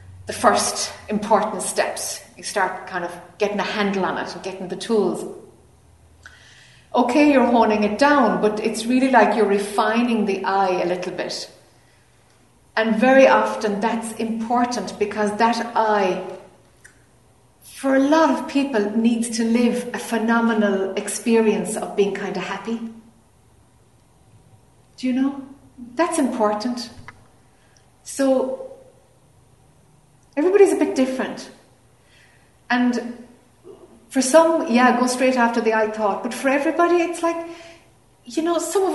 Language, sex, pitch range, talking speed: English, female, 190-245 Hz, 130 wpm